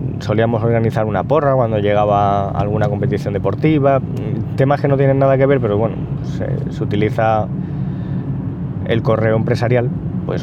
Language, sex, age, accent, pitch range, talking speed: Spanish, male, 20-39, Spanish, 115-140 Hz, 145 wpm